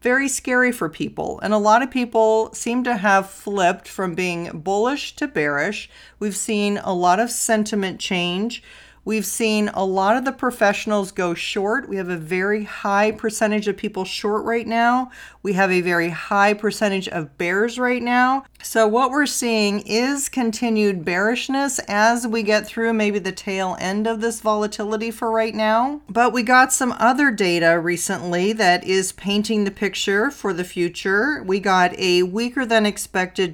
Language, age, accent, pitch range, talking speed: English, 40-59, American, 190-230 Hz, 175 wpm